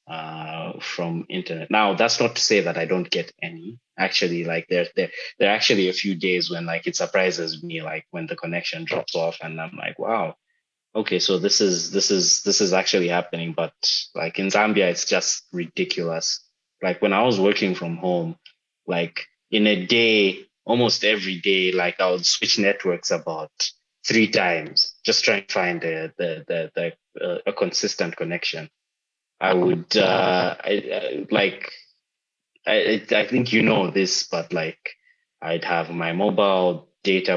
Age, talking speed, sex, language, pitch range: 20-39, 175 wpm, male, English, 85-110 Hz